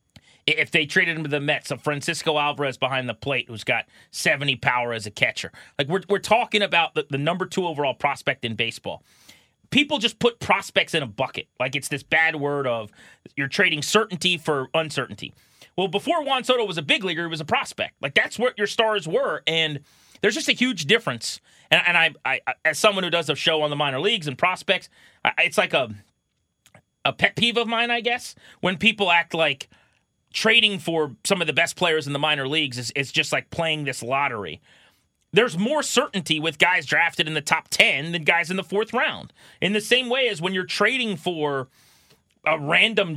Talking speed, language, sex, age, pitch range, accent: 210 wpm, English, male, 30-49, 145-205 Hz, American